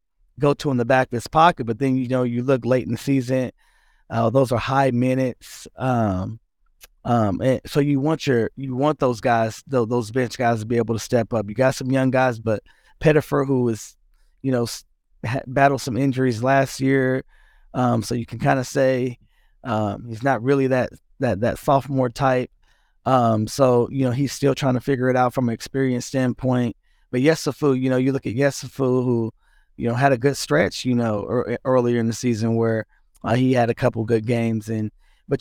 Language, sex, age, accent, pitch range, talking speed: English, male, 20-39, American, 115-135 Hz, 210 wpm